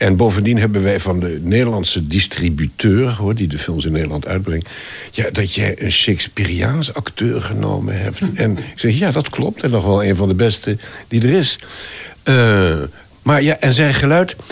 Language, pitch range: Dutch, 95-120 Hz